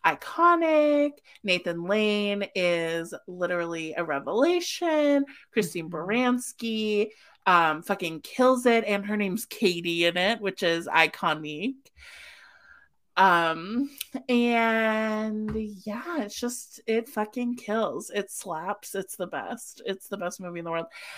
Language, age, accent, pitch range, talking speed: English, 30-49, American, 170-225 Hz, 120 wpm